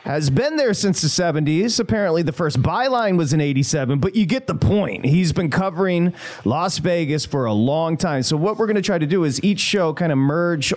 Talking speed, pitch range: 230 wpm, 135-185 Hz